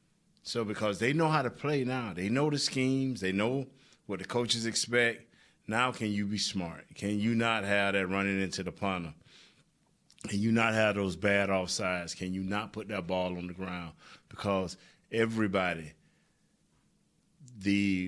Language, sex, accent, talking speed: English, male, American, 170 wpm